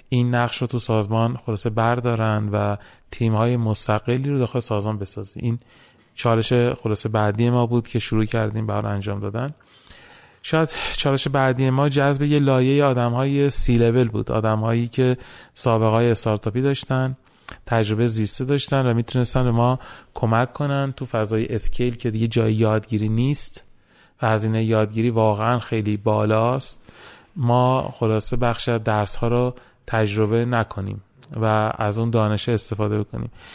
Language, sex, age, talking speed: Persian, male, 30-49, 145 wpm